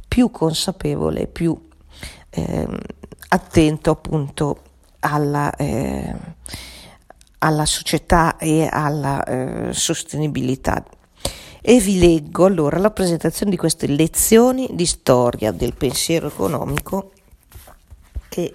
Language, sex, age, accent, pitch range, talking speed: Italian, female, 40-59, native, 145-185 Hz, 90 wpm